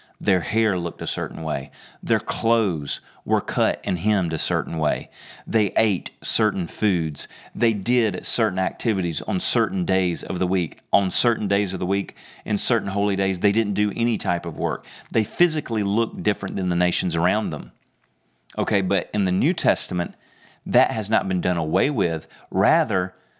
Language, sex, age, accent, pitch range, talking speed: English, male, 30-49, American, 90-115 Hz, 175 wpm